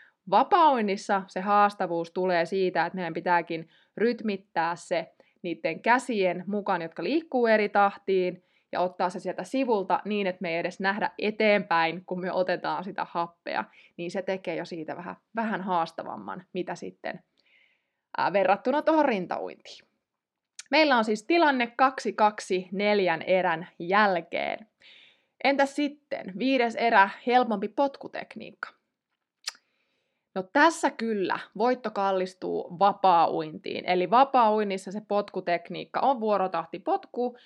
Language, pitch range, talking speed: Finnish, 180-235 Hz, 115 wpm